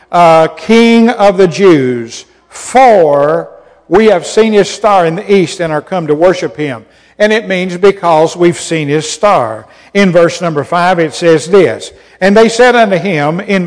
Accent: American